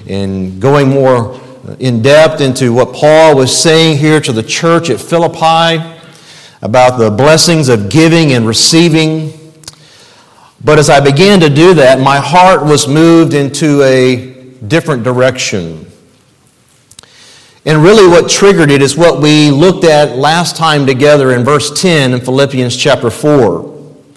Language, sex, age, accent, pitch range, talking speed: English, male, 50-69, American, 135-180 Hz, 140 wpm